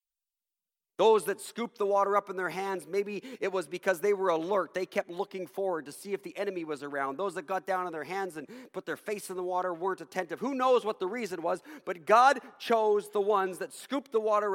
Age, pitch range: 40-59, 175-245 Hz